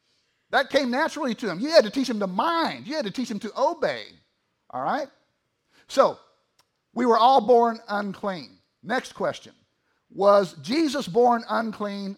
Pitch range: 190-240 Hz